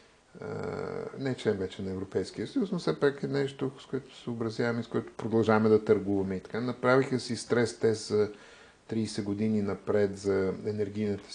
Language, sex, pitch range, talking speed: Bulgarian, male, 105-125 Hz, 170 wpm